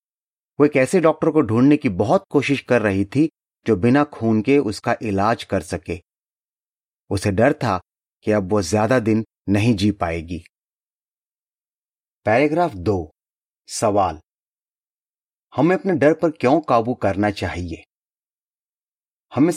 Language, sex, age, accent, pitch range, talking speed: Hindi, male, 30-49, native, 105-145 Hz, 130 wpm